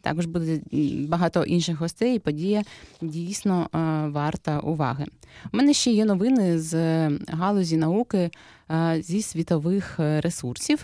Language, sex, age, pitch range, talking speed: Ukrainian, female, 20-39, 155-210 Hz, 115 wpm